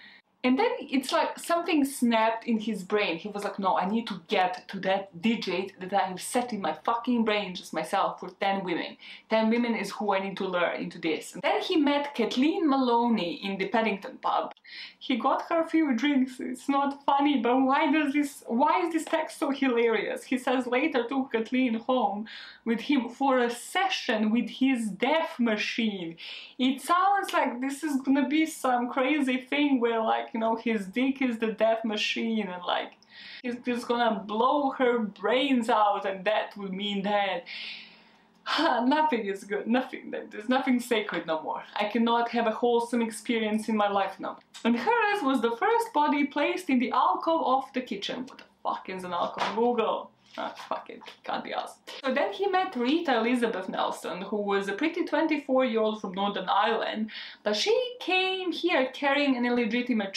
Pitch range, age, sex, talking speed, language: 210-275 Hz, 20-39, female, 180 wpm, English